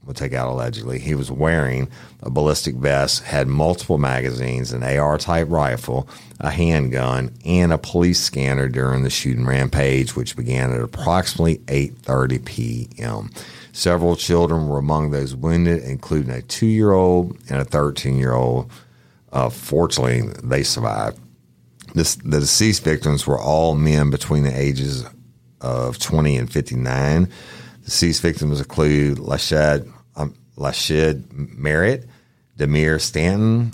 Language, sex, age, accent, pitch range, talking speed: English, male, 50-69, American, 65-85 Hz, 125 wpm